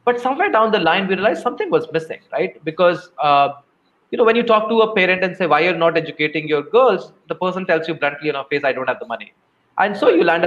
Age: 20-39